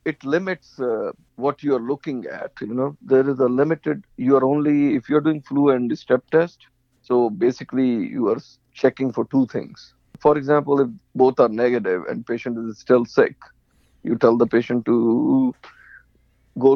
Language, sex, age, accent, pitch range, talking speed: English, male, 50-69, Indian, 125-155 Hz, 180 wpm